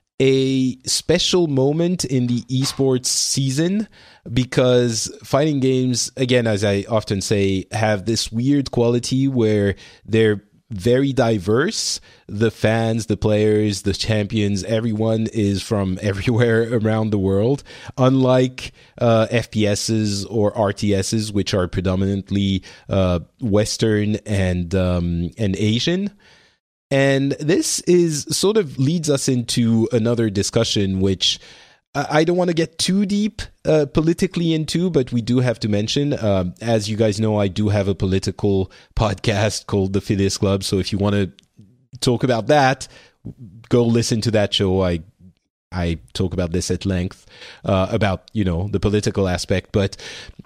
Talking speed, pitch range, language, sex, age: 145 wpm, 100-130 Hz, English, male, 30-49